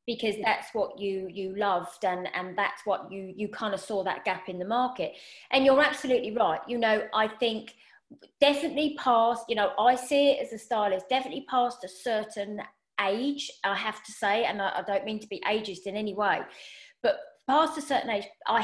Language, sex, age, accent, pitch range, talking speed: English, female, 30-49, British, 200-245 Hz, 205 wpm